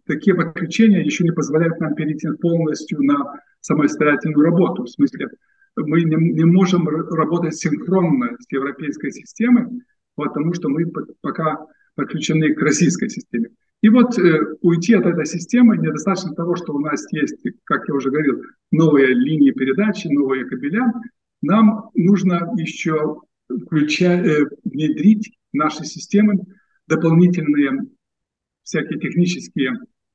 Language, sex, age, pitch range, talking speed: Russian, male, 50-69, 155-215 Hz, 120 wpm